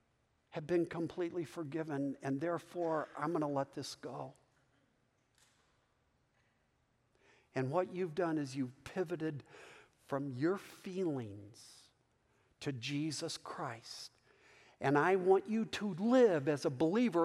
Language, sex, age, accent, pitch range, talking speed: English, male, 50-69, American, 150-215 Hz, 120 wpm